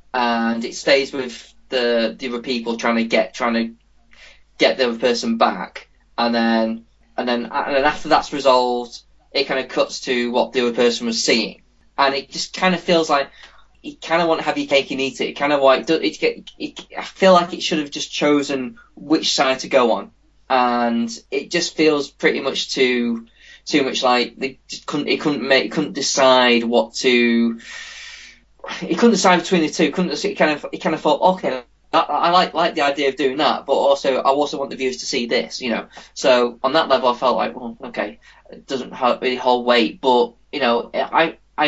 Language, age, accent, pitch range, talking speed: English, 20-39, British, 115-145 Hz, 215 wpm